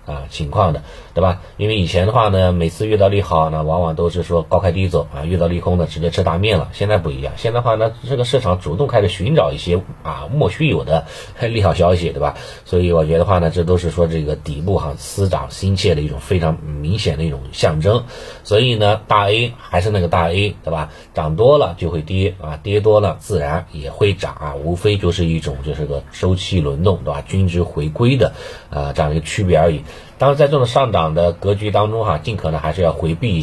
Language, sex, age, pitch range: Chinese, male, 30-49, 80-95 Hz